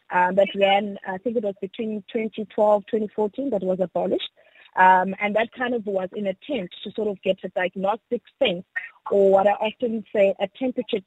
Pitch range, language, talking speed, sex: 190-240 Hz, English, 190 wpm, female